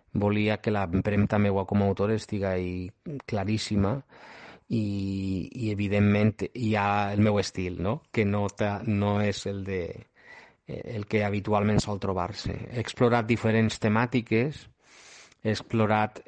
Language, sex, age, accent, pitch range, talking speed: Spanish, male, 30-49, Spanish, 100-115 Hz, 125 wpm